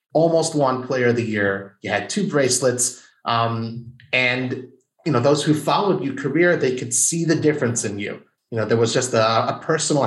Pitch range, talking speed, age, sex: 115-145 Hz, 205 wpm, 30-49, male